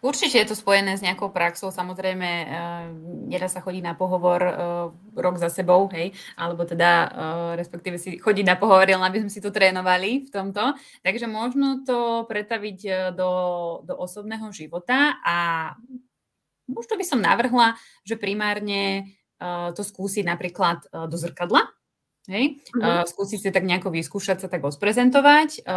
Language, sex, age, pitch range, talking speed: Slovak, female, 20-39, 175-210 Hz, 155 wpm